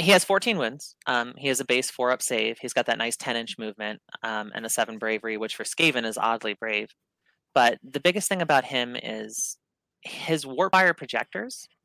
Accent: American